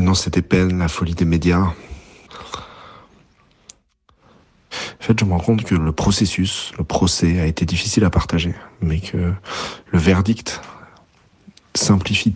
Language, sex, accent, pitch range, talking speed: French, male, French, 80-95 Hz, 135 wpm